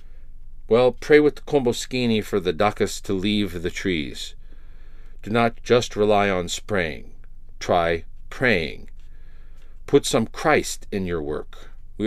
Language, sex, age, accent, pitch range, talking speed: English, male, 50-69, American, 95-120 Hz, 135 wpm